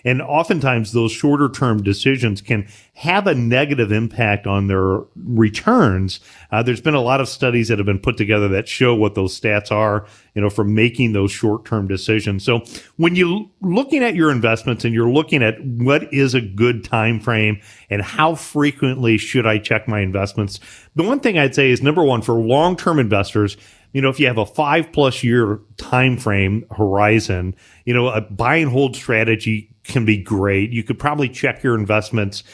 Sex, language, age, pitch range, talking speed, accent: male, English, 40-59, 105-125 Hz, 195 wpm, American